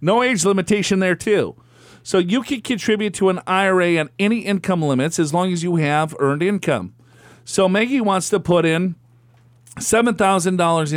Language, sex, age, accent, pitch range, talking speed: English, male, 50-69, American, 150-200 Hz, 165 wpm